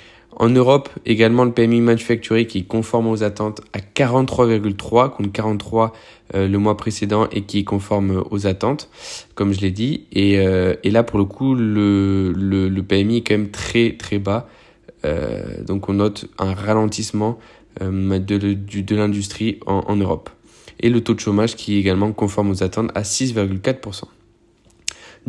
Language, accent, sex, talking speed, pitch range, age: French, French, male, 175 wpm, 100-115 Hz, 20-39